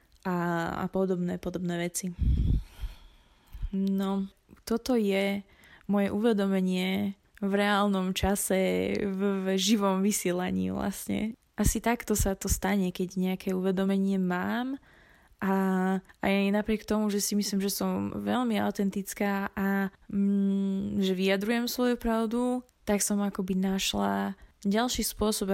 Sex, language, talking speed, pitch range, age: female, Slovak, 115 wpm, 185-205 Hz, 20-39